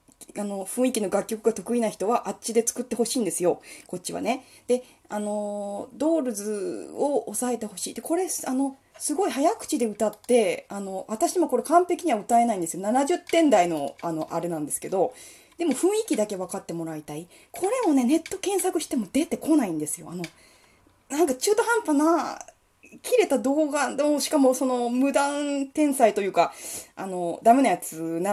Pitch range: 180-300 Hz